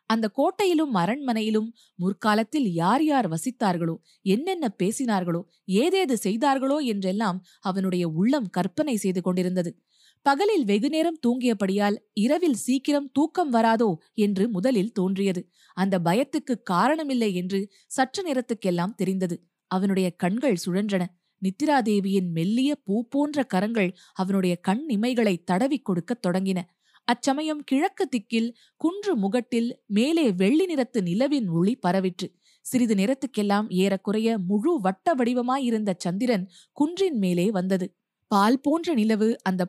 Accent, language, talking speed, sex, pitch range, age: native, Tamil, 105 wpm, female, 190-260 Hz, 20-39